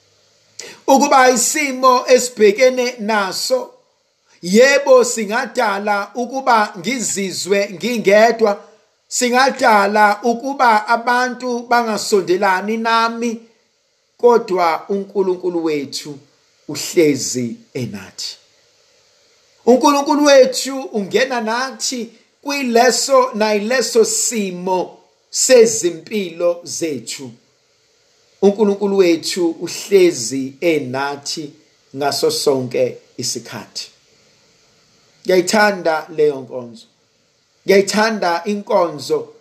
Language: English